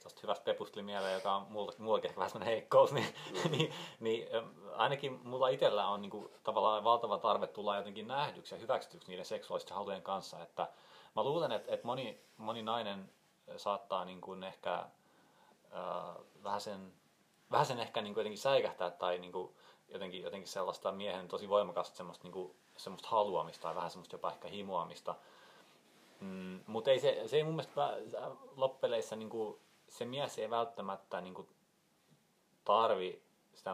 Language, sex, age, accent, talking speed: Finnish, male, 30-49, native, 160 wpm